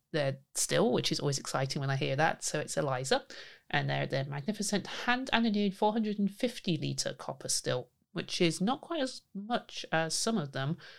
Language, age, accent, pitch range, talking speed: English, 30-49, British, 140-190 Hz, 185 wpm